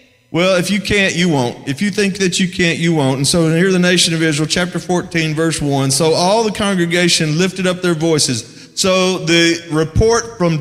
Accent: American